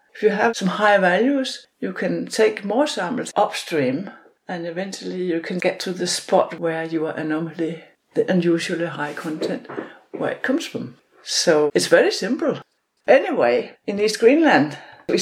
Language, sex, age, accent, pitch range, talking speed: English, female, 60-79, Danish, 175-230 Hz, 160 wpm